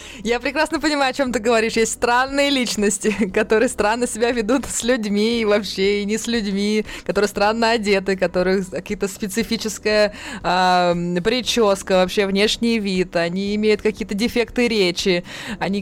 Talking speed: 150 wpm